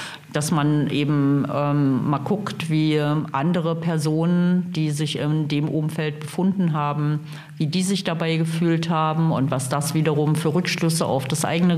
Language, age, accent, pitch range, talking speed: German, 50-69, German, 150-175 Hz, 160 wpm